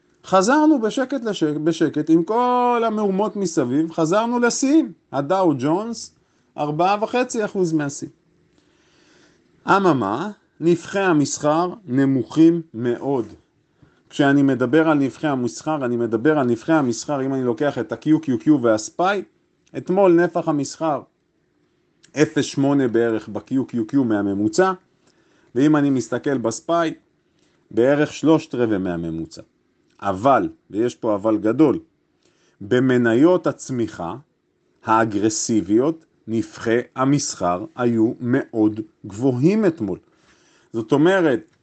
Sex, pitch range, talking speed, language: male, 120-180 Hz, 95 wpm, Hebrew